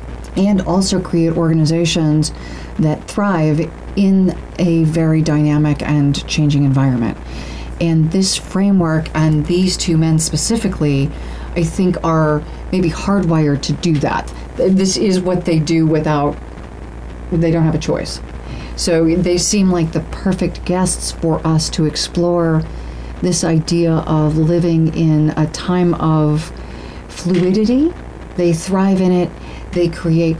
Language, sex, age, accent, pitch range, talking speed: English, female, 40-59, American, 150-175 Hz, 130 wpm